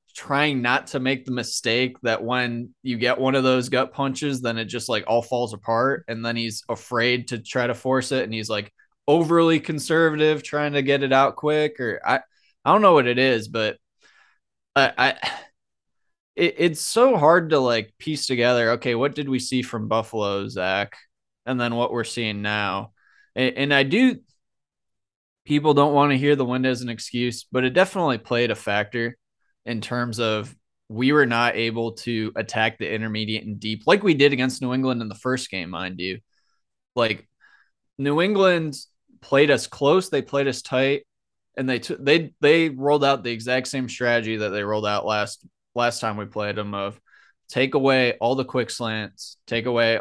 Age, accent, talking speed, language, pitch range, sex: 20-39, American, 190 wpm, English, 110-135 Hz, male